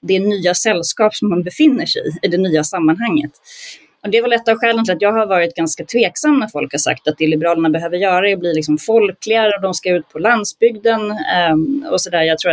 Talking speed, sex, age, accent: 245 wpm, female, 30-49, native